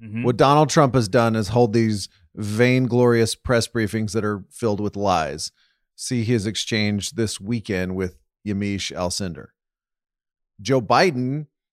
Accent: American